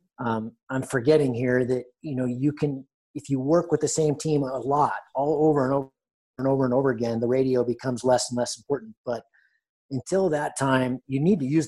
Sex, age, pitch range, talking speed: male, 30-49, 125-155 Hz, 215 wpm